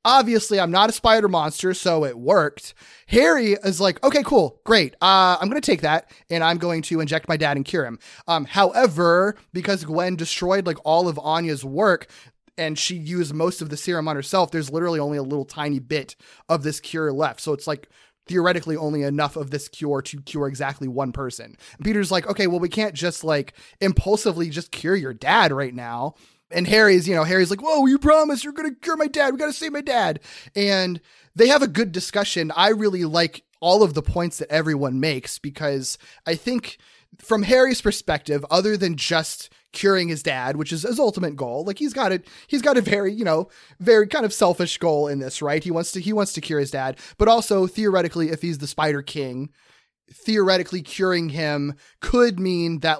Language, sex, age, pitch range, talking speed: English, male, 20-39, 150-195 Hz, 210 wpm